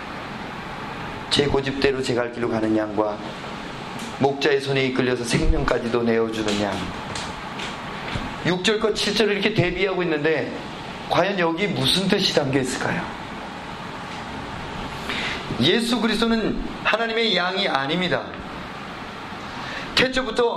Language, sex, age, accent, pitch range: Korean, male, 30-49, native, 140-220 Hz